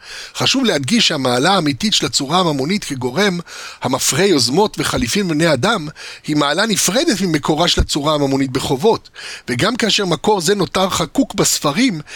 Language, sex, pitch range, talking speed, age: Hebrew, male, 145-205 Hz, 140 wpm, 60-79